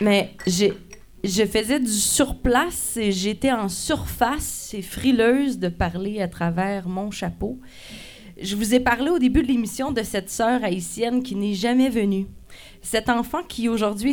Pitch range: 190-235 Hz